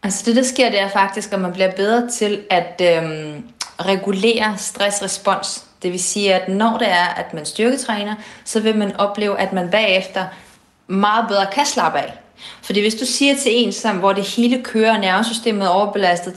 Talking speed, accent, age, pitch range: 185 wpm, native, 30-49, 185-225 Hz